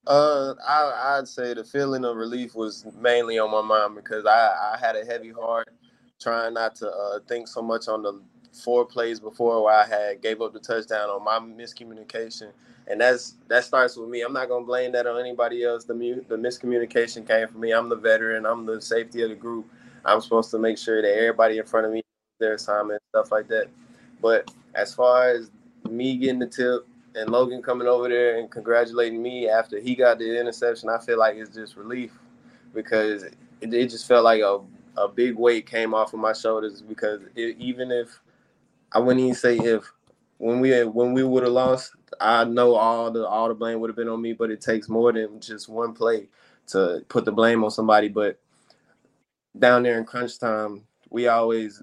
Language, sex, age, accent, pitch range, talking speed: English, male, 20-39, American, 110-120 Hz, 205 wpm